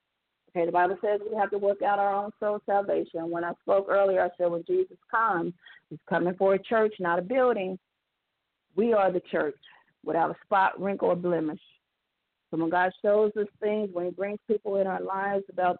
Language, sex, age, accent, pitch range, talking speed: English, female, 40-59, American, 175-205 Hz, 205 wpm